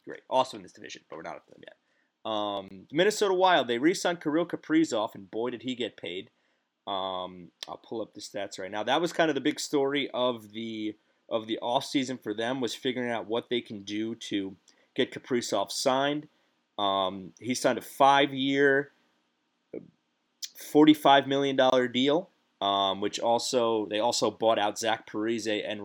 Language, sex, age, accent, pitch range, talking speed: English, male, 30-49, American, 105-145 Hz, 170 wpm